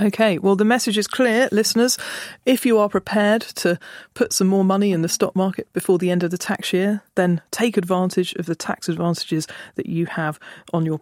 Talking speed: 210 wpm